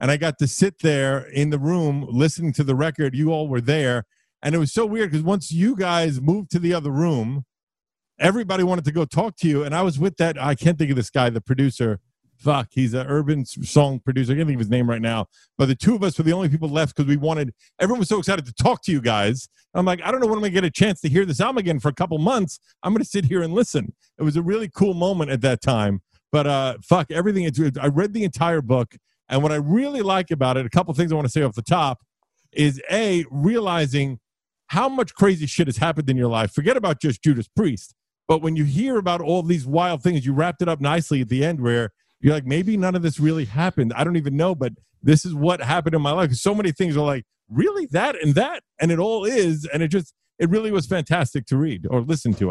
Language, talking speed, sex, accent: English, 265 wpm, male, American